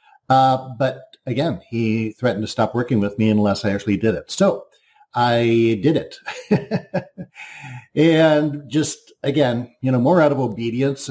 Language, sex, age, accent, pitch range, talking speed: English, male, 50-69, American, 110-155 Hz, 150 wpm